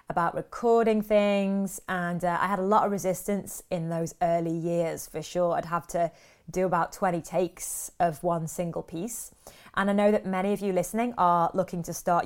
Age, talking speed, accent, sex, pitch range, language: 20-39, 195 wpm, British, female, 175-200 Hz, English